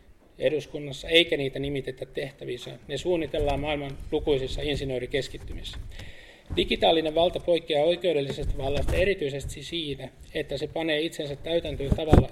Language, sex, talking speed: Finnish, male, 110 wpm